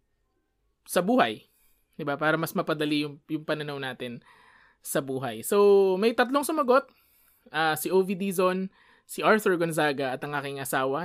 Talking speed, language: 150 wpm, Filipino